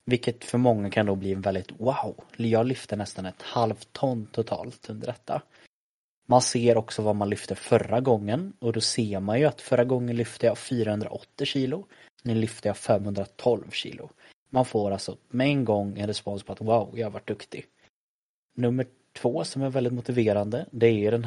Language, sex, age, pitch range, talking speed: Swedish, male, 20-39, 100-125 Hz, 185 wpm